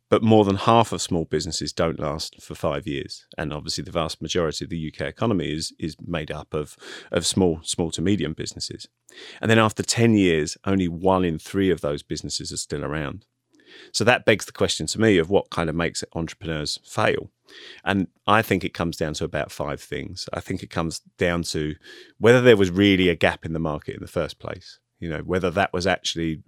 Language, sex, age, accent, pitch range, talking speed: English, male, 30-49, British, 80-100 Hz, 220 wpm